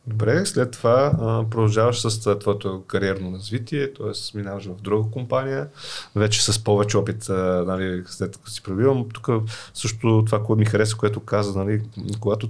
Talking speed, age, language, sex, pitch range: 175 wpm, 30-49, Bulgarian, male, 100-110 Hz